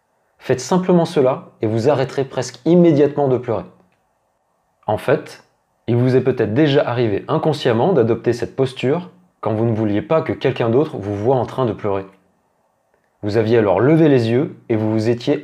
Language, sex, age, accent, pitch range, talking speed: French, male, 20-39, French, 115-150 Hz, 180 wpm